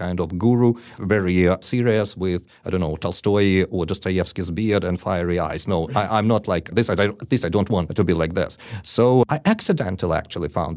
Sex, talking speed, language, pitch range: male, 195 wpm, English, 95-130 Hz